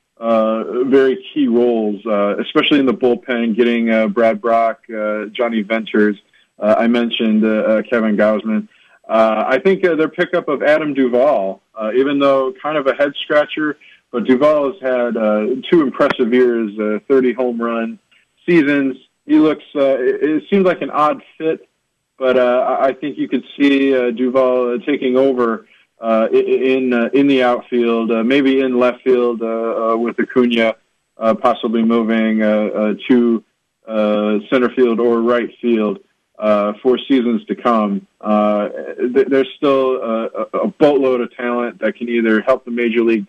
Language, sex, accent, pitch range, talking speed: English, male, American, 110-130 Hz, 165 wpm